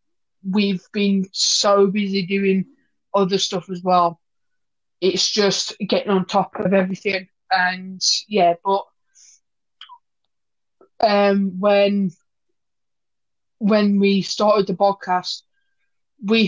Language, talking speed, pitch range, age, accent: English, 100 wpm, 180-205 Hz, 20-39, British